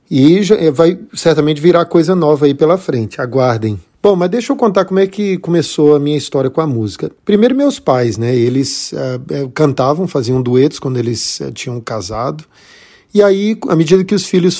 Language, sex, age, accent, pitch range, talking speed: Portuguese, male, 40-59, Brazilian, 135-185 Hz, 190 wpm